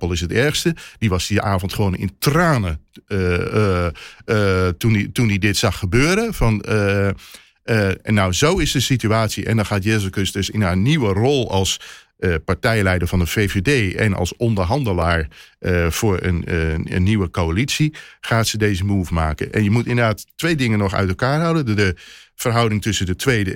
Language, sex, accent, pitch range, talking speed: Dutch, male, Dutch, 95-135 Hz, 190 wpm